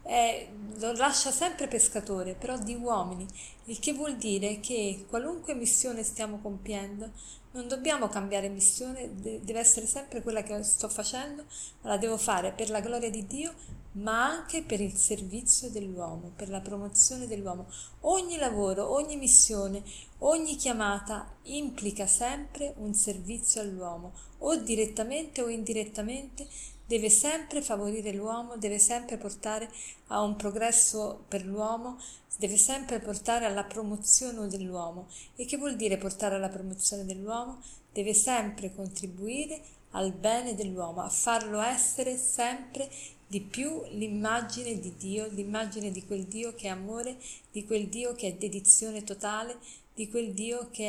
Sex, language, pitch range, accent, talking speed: female, Italian, 205-245 Hz, native, 145 wpm